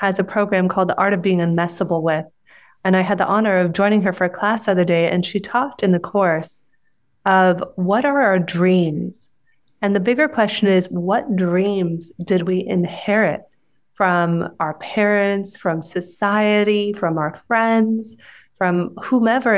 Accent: American